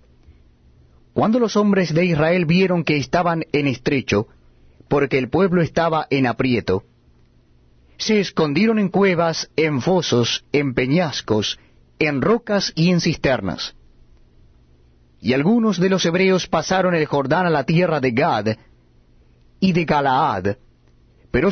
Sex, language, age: male, Spanish, 30-49